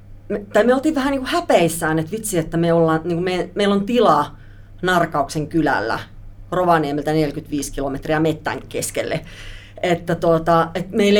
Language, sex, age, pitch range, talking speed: Finnish, female, 40-59, 155-210 Hz, 150 wpm